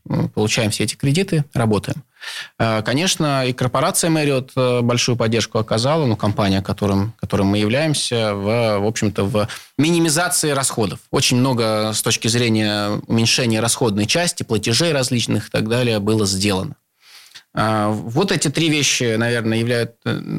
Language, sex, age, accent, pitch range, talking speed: Russian, male, 20-39, native, 110-145 Hz, 130 wpm